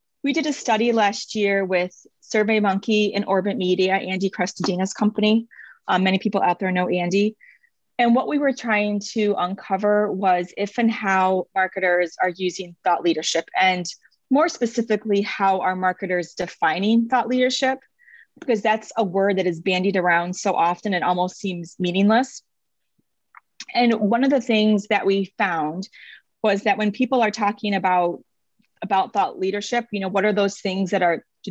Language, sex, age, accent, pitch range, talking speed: English, female, 30-49, American, 185-220 Hz, 165 wpm